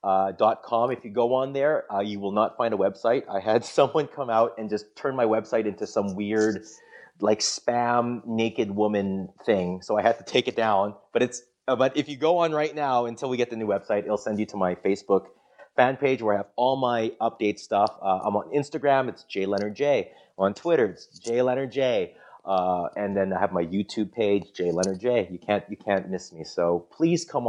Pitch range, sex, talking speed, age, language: 95-115 Hz, male, 220 wpm, 30-49, English